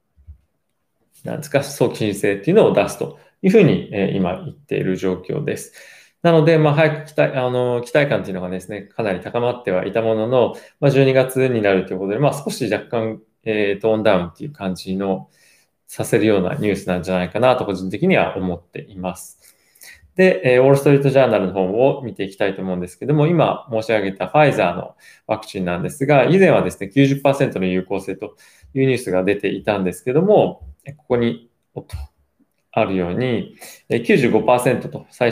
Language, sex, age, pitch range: Japanese, male, 20-39, 95-130 Hz